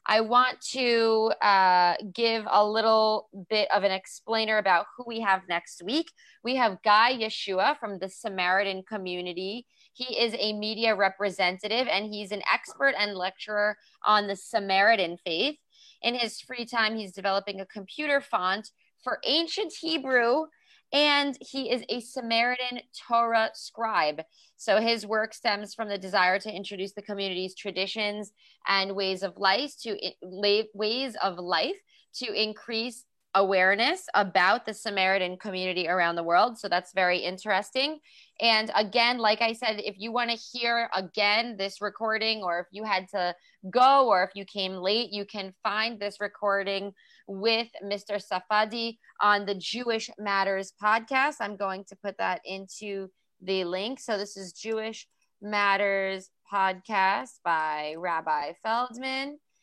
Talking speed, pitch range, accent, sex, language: 150 wpm, 195-230 Hz, American, female, English